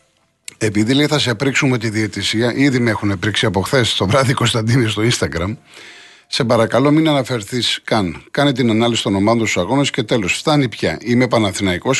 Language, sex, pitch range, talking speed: Greek, male, 110-135 Hz, 180 wpm